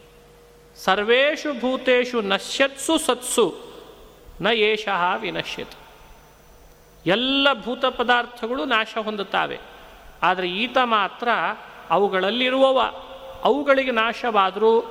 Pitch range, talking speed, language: 200-240 Hz, 70 wpm, Kannada